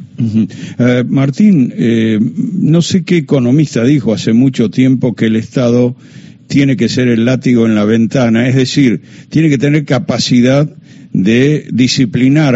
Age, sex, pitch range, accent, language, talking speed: 50-69, male, 120-155 Hz, Argentinian, Spanish, 140 wpm